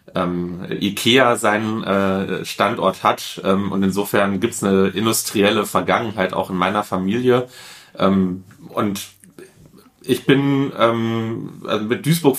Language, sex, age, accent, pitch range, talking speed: German, male, 30-49, German, 95-115 Hz, 125 wpm